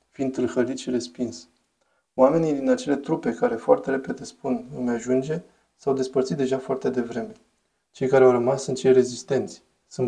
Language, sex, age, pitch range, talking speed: Romanian, male, 20-39, 120-140 Hz, 160 wpm